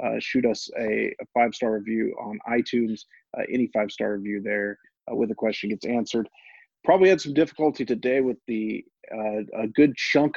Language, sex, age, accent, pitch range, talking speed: English, male, 40-59, American, 110-135 Hz, 180 wpm